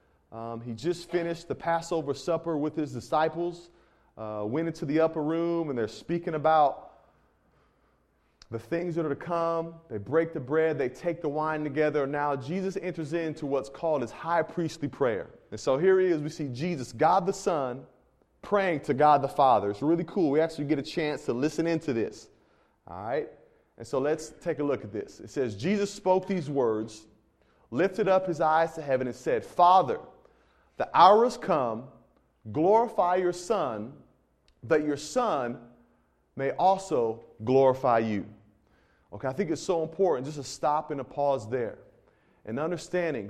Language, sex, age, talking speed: English, male, 30-49, 175 wpm